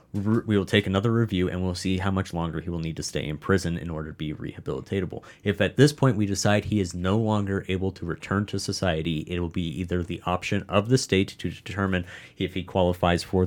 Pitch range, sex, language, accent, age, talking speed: 85-105 Hz, male, English, American, 30-49, 235 wpm